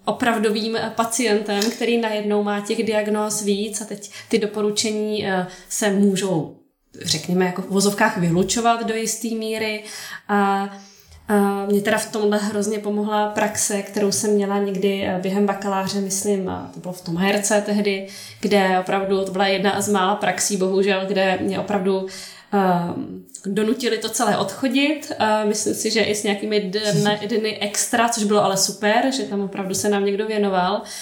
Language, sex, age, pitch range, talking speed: Czech, female, 20-39, 195-215 Hz, 155 wpm